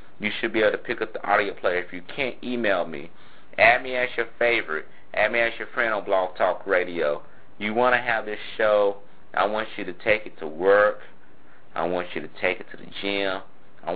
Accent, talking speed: American, 230 wpm